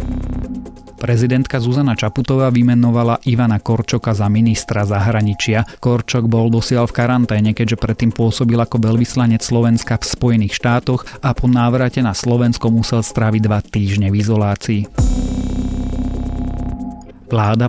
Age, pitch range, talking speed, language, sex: 30-49, 105-125 Hz, 120 wpm, Slovak, male